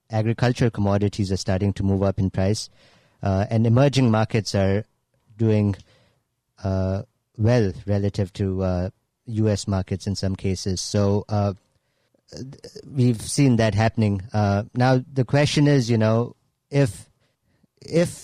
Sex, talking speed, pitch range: male, 130 wpm, 100-120 Hz